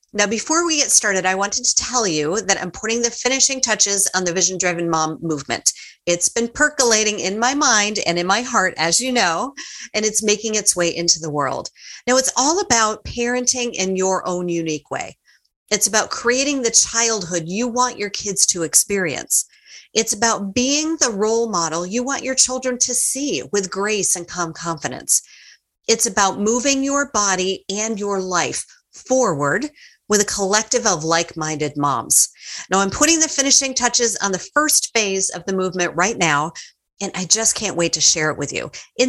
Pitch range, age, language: 180-245 Hz, 40-59, English